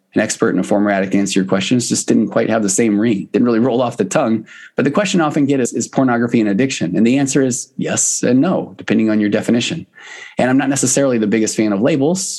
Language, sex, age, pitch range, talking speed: English, male, 20-39, 100-125 Hz, 260 wpm